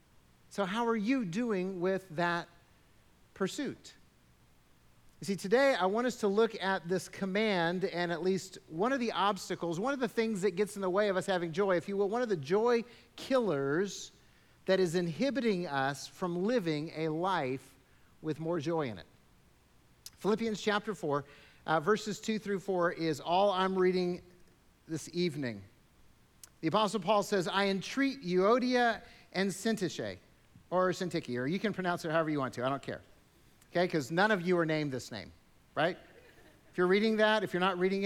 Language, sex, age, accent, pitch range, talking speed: English, male, 50-69, American, 170-220 Hz, 180 wpm